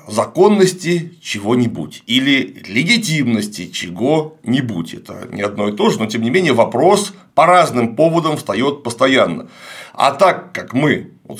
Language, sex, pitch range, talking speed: Russian, male, 105-165 Hz, 135 wpm